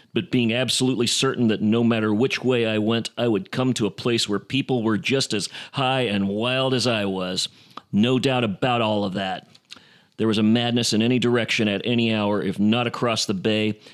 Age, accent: 40-59, American